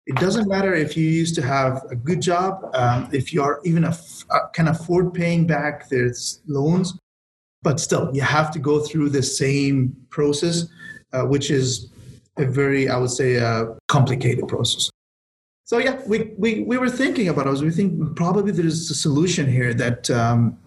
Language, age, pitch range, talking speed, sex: English, 30-49, 130-160 Hz, 195 wpm, male